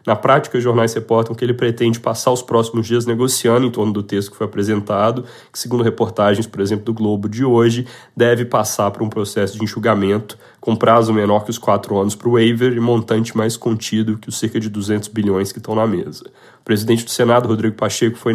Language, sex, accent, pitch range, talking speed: Portuguese, male, Brazilian, 110-120 Hz, 220 wpm